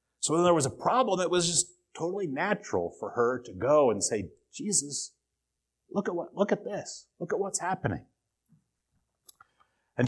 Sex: male